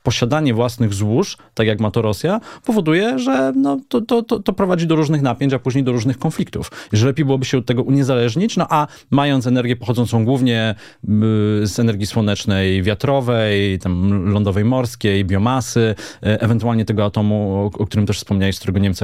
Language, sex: Polish, male